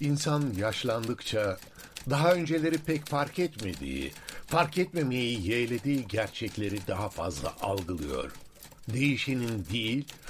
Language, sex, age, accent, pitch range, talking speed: Turkish, male, 60-79, native, 110-145 Hz, 95 wpm